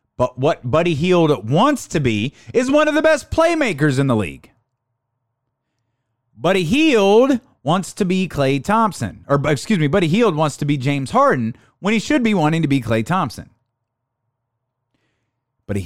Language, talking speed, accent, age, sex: English, 165 wpm, American, 30-49, male